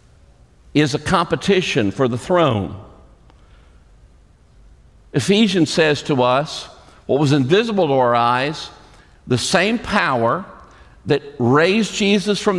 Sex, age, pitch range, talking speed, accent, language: male, 50-69, 135-175 Hz, 110 wpm, American, English